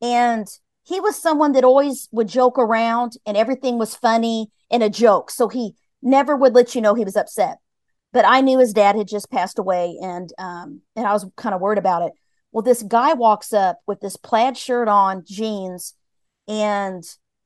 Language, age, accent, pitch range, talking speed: English, 40-59, American, 215-260 Hz, 195 wpm